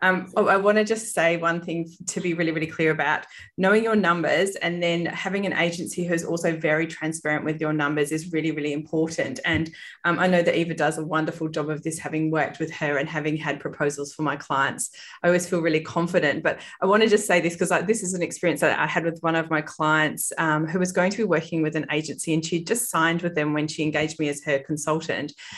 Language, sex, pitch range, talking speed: English, female, 155-190 Hz, 245 wpm